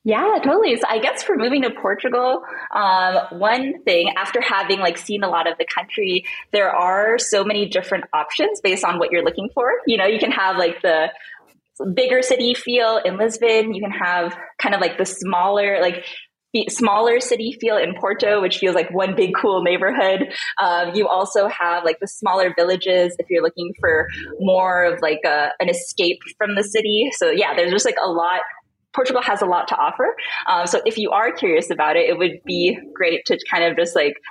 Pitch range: 175-240 Hz